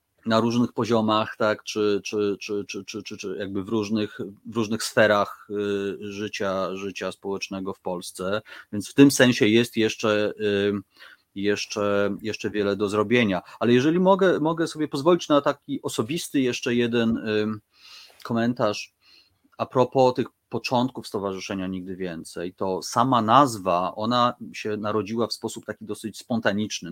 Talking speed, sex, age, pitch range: 140 wpm, male, 30-49, 100-120 Hz